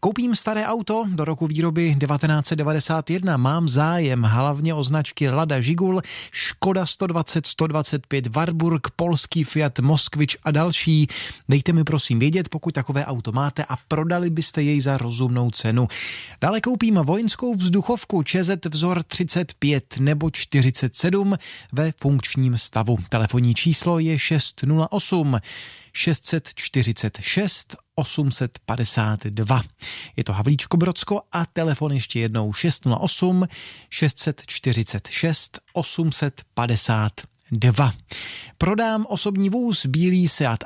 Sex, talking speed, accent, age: male, 110 wpm, native, 30-49